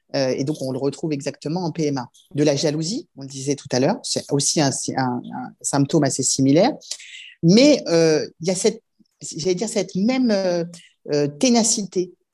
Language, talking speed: French, 180 wpm